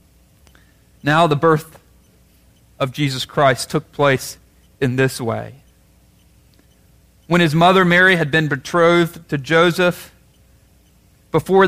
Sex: male